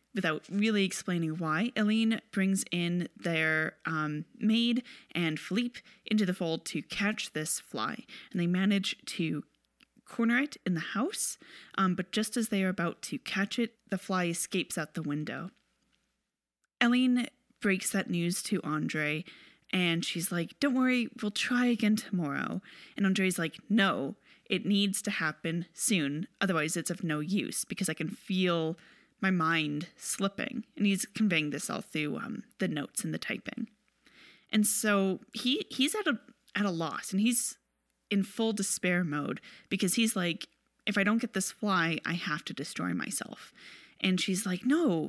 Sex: female